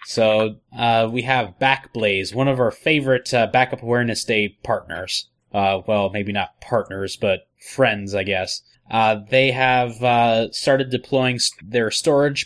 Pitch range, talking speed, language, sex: 110-130 Hz, 155 wpm, English, male